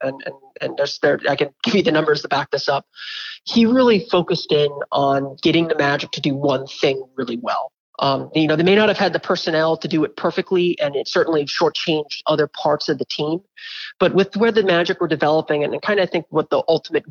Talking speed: 235 wpm